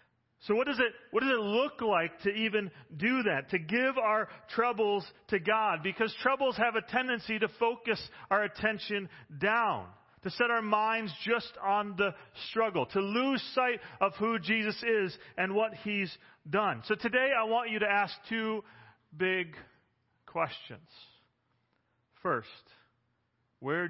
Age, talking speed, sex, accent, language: 40-59, 150 wpm, male, American, English